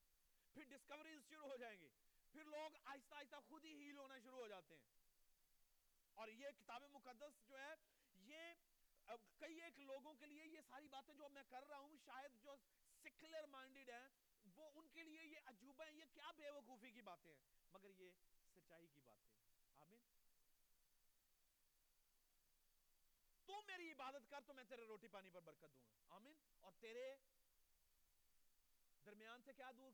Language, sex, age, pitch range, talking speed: Urdu, male, 40-59, 220-300 Hz, 30 wpm